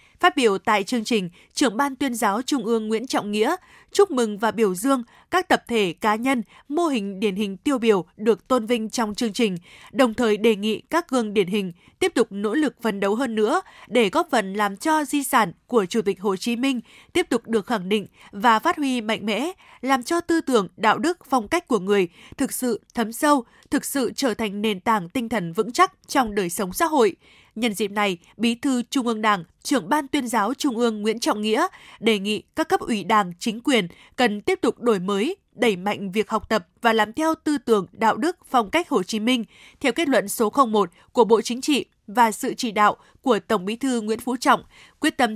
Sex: female